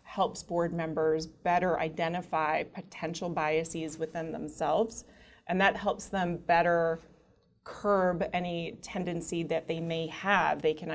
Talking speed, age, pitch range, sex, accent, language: 125 wpm, 30-49, 160-185 Hz, female, American, English